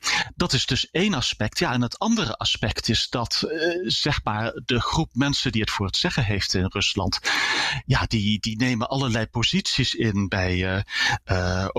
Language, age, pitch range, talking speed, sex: Dutch, 40-59, 105-165 Hz, 185 wpm, male